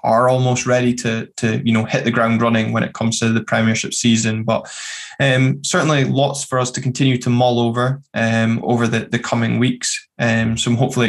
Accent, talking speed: British, 195 wpm